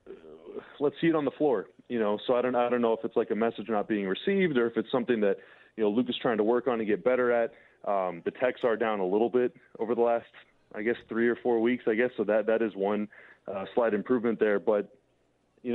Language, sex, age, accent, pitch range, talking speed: English, male, 20-39, American, 105-125 Hz, 265 wpm